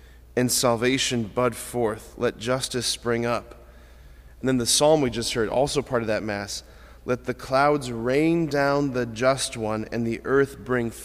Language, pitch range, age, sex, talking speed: English, 100-140 Hz, 30-49, male, 175 wpm